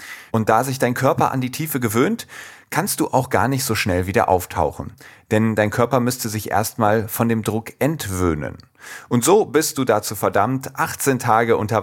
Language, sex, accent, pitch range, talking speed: German, male, German, 105-125 Hz, 190 wpm